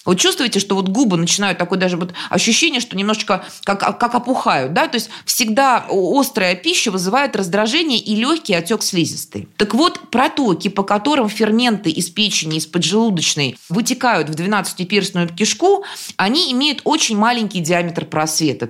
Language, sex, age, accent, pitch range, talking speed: Russian, female, 20-39, native, 175-240 Hz, 150 wpm